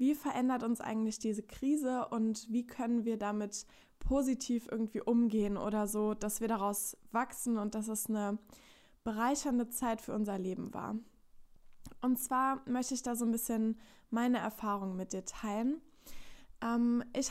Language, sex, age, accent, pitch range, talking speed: German, female, 10-29, German, 215-250 Hz, 155 wpm